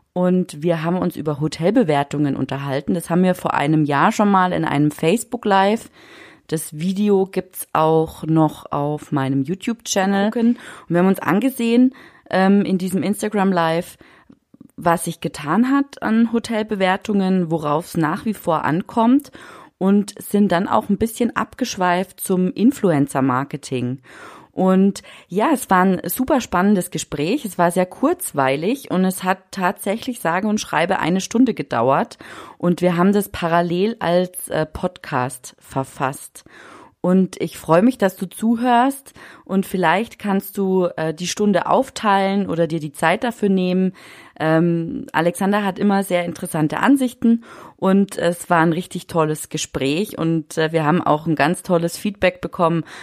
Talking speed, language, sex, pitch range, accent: 150 wpm, German, female, 160-205 Hz, German